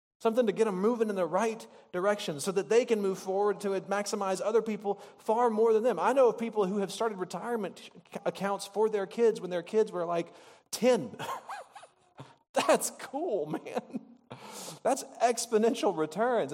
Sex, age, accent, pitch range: male, 40-59, American, 200-255 Hz